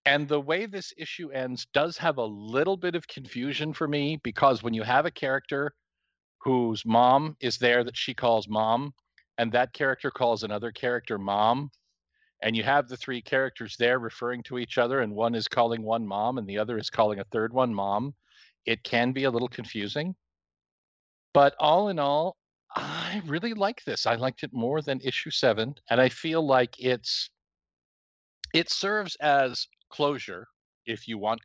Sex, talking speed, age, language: male, 180 wpm, 50-69, English